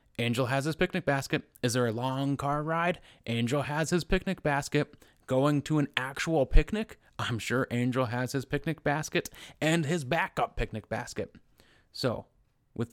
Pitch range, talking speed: 120-150 Hz, 160 wpm